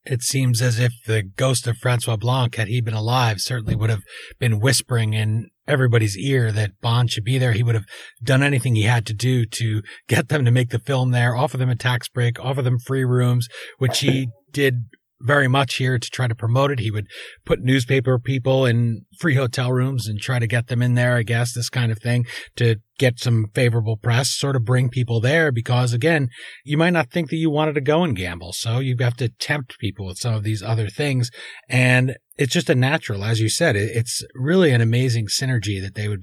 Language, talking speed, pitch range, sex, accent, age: English, 225 wpm, 115-130 Hz, male, American, 30-49